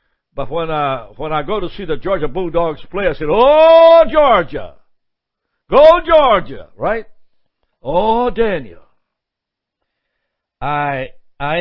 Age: 60-79